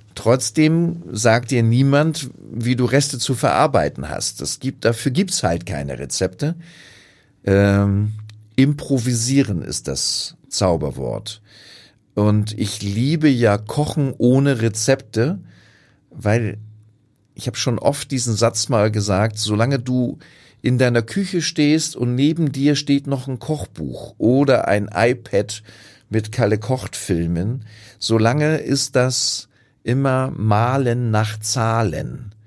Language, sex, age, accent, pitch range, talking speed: German, male, 40-59, German, 110-140 Hz, 120 wpm